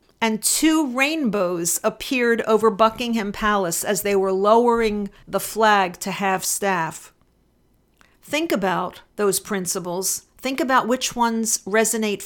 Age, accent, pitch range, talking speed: 50-69, American, 195-235 Hz, 120 wpm